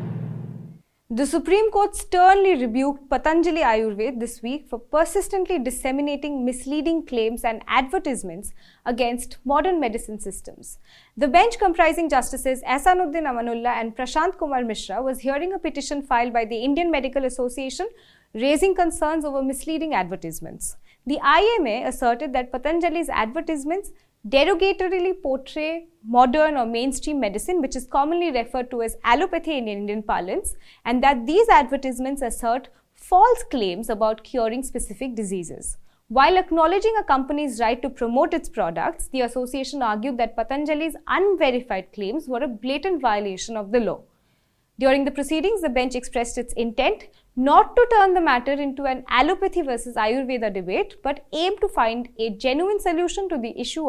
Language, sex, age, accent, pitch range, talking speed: English, female, 20-39, Indian, 235-335 Hz, 145 wpm